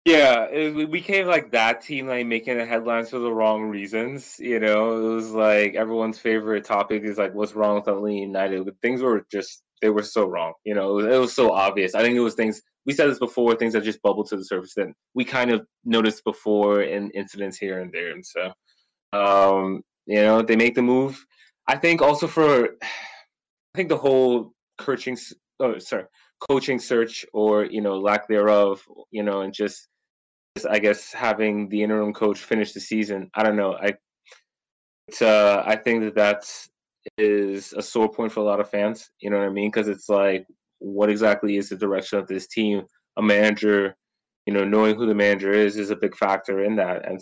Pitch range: 100-115 Hz